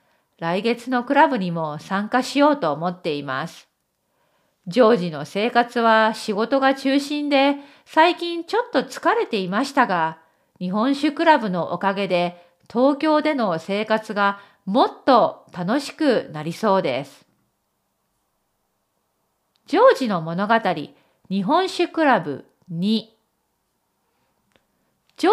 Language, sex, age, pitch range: Japanese, female, 40-59, 180-285 Hz